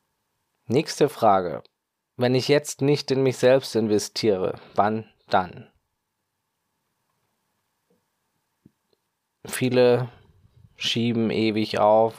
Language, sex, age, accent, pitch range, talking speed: German, male, 20-39, German, 100-115 Hz, 80 wpm